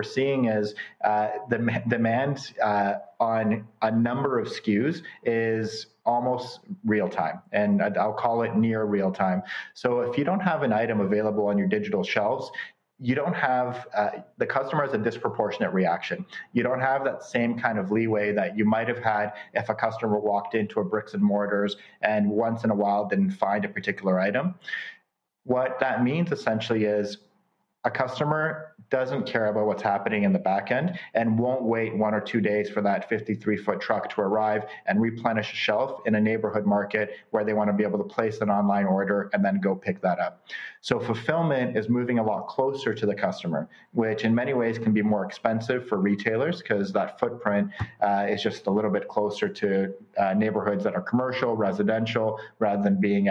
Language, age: English, 30-49